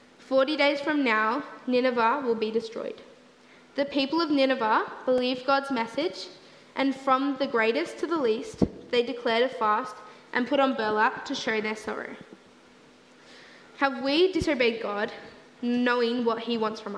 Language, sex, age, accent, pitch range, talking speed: English, female, 10-29, Australian, 235-285 Hz, 150 wpm